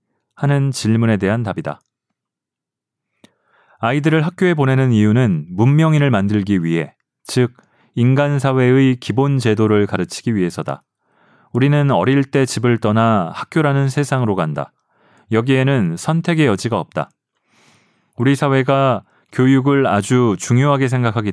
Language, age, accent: Korean, 30-49, native